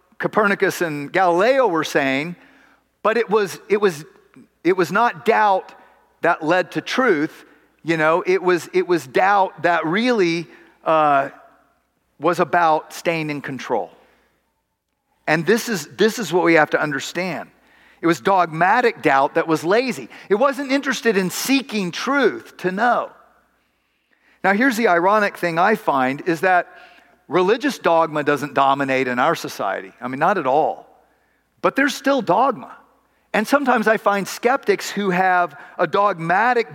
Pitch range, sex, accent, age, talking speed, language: 170-240 Hz, male, American, 40-59, 150 wpm, English